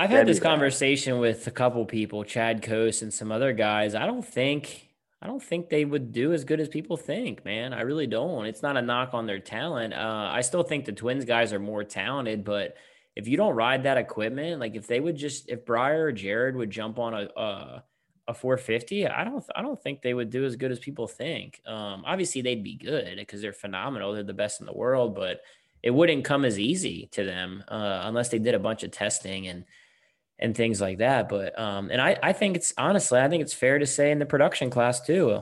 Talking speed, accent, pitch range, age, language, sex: 235 wpm, American, 105-135 Hz, 20-39, English, male